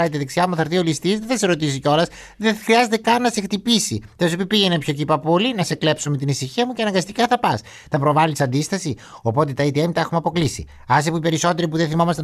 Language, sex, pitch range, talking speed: Greek, male, 140-195 Hz, 230 wpm